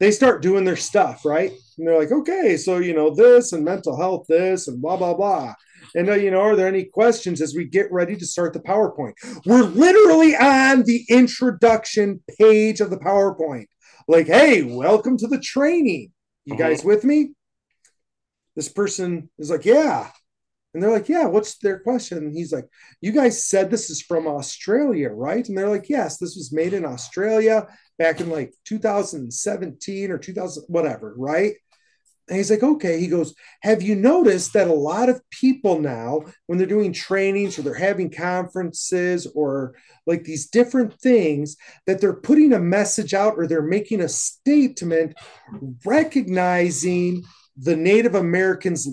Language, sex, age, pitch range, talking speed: English, male, 30-49, 165-220 Hz, 170 wpm